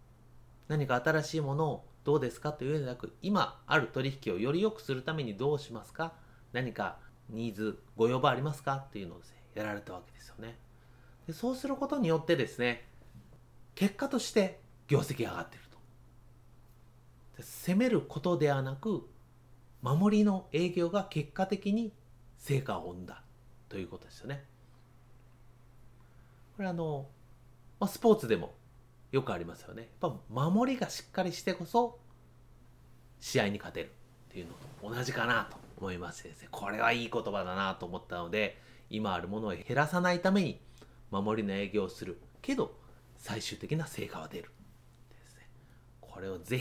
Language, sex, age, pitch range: Japanese, male, 30-49, 115-145 Hz